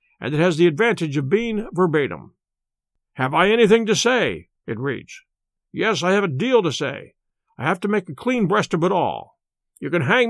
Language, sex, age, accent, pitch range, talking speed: English, male, 50-69, American, 155-210 Hz, 205 wpm